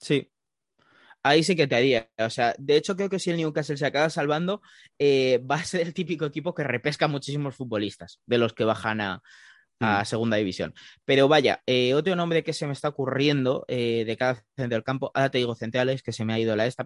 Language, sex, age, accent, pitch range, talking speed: Spanish, male, 20-39, Spanish, 120-155 Hz, 230 wpm